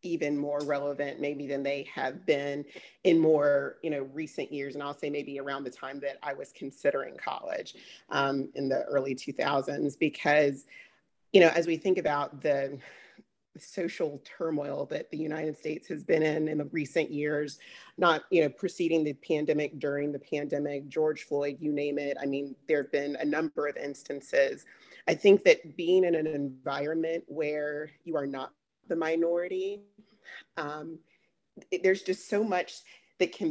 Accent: American